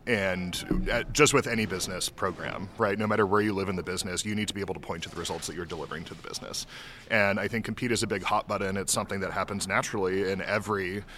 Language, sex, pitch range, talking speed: English, male, 95-115 Hz, 250 wpm